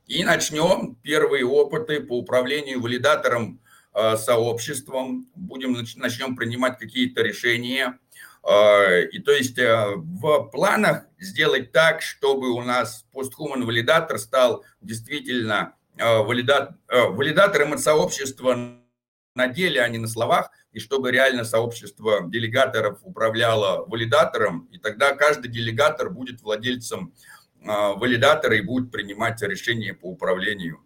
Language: Russian